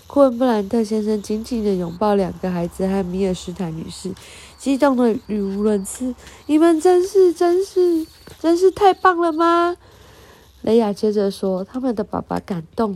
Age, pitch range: 20-39, 185-250 Hz